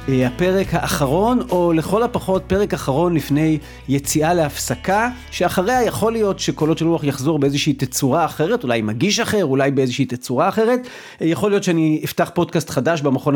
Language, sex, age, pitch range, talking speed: Hebrew, male, 40-59, 135-190 Hz, 155 wpm